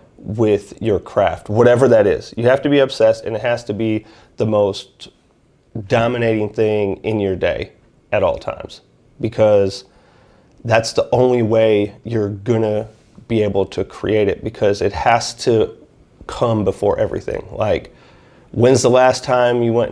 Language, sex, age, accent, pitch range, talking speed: English, male, 30-49, American, 105-120 Hz, 155 wpm